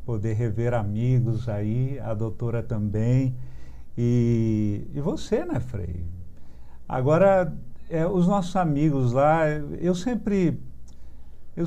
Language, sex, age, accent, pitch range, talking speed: Portuguese, male, 50-69, Brazilian, 115-150 Hz, 100 wpm